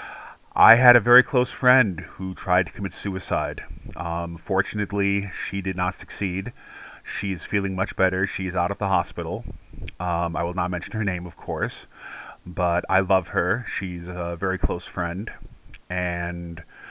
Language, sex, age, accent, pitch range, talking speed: English, male, 30-49, American, 90-100 Hz, 160 wpm